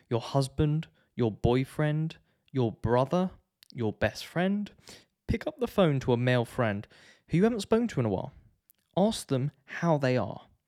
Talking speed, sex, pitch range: 170 wpm, male, 120-155 Hz